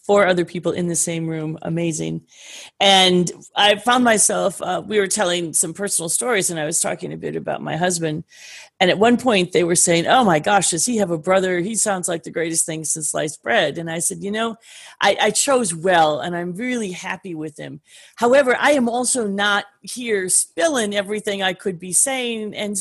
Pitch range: 180-255 Hz